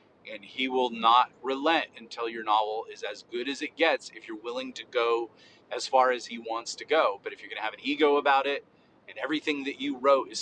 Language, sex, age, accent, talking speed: English, male, 30-49, American, 240 wpm